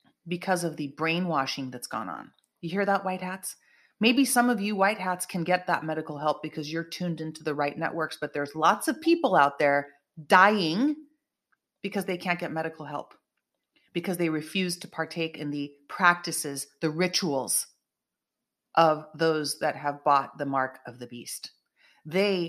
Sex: female